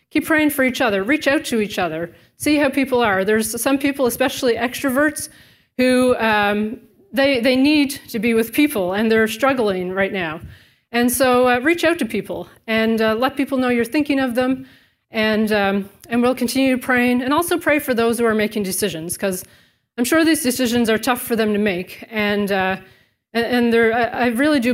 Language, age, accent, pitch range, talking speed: English, 30-49, American, 210-255 Hz, 195 wpm